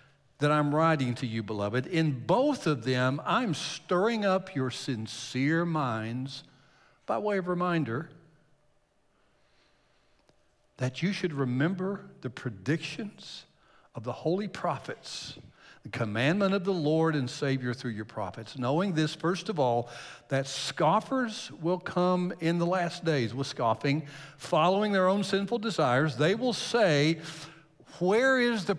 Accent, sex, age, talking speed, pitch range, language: American, male, 60-79, 140 wpm, 130-180 Hz, English